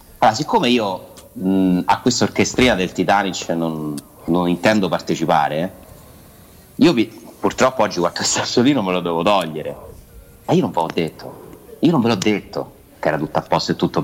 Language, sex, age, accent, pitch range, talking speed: Italian, male, 30-49, native, 80-110 Hz, 180 wpm